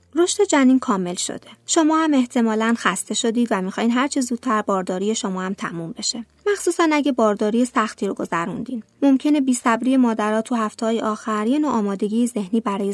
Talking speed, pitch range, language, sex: 170 wpm, 210-255 Hz, Persian, female